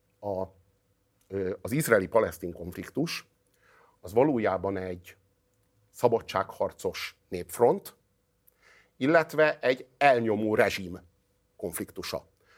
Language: Hungarian